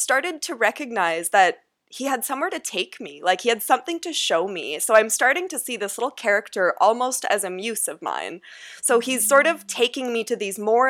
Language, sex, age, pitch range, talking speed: English, female, 20-39, 190-235 Hz, 220 wpm